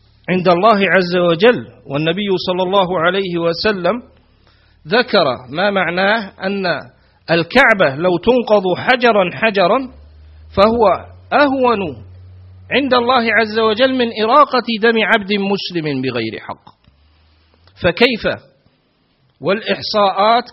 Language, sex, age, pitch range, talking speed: Arabic, male, 50-69, 165-235 Hz, 95 wpm